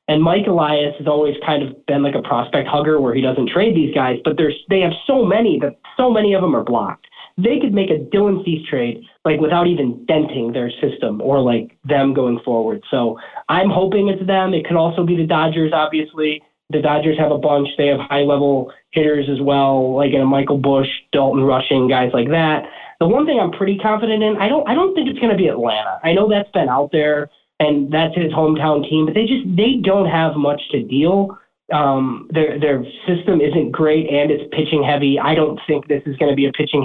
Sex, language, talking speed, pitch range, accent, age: male, English, 225 wpm, 140-175 Hz, American, 20-39